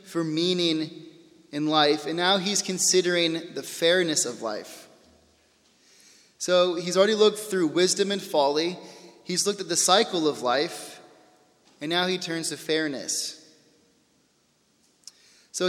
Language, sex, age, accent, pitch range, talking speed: English, male, 20-39, American, 165-195 Hz, 130 wpm